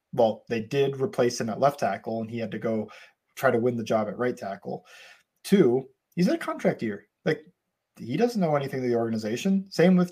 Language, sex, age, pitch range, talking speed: English, male, 20-39, 120-160 Hz, 220 wpm